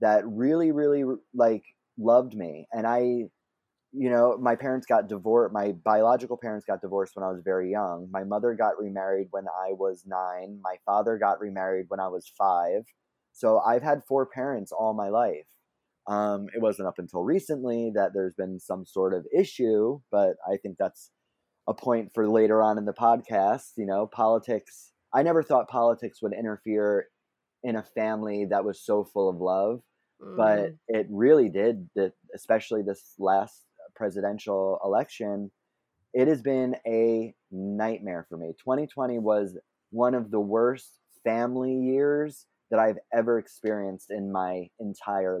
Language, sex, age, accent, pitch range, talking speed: English, male, 20-39, American, 100-120 Hz, 165 wpm